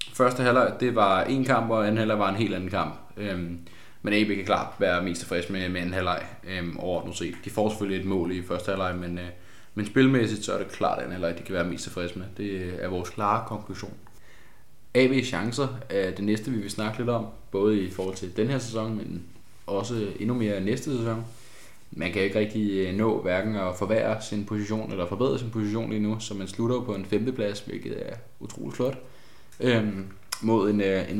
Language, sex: Danish, male